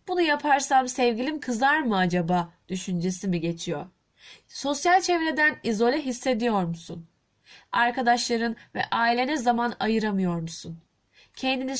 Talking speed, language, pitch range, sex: 105 wpm, Turkish, 205-270 Hz, female